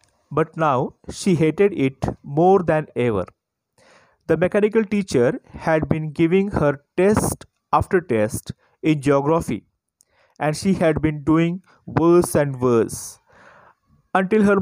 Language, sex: Marathi, male